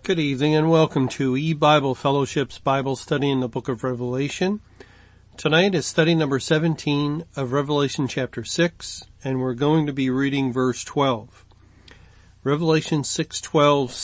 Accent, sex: American, male